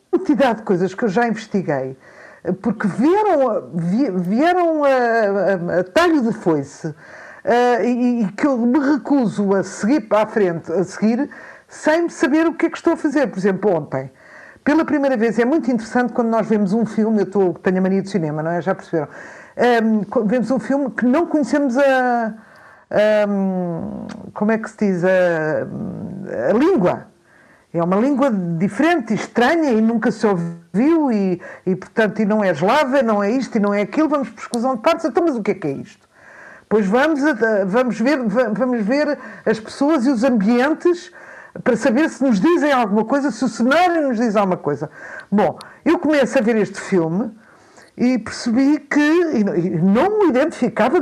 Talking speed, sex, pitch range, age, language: 185 wpm, female, 200-285 Hz, 50-69, Portuguese